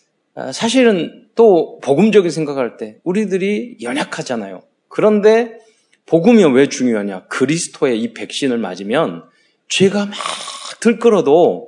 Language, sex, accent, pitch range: Korean, male, native, 125-200 Hz